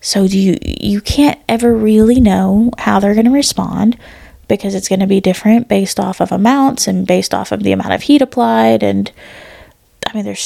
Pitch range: 195-230 Hz